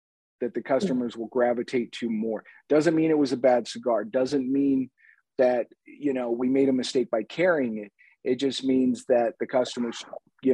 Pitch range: 120-140 Hz